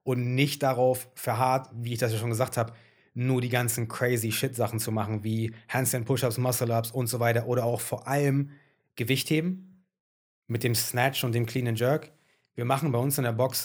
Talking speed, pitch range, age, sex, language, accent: 195 wpm, 120-140 Hz, 30-49, male, German, German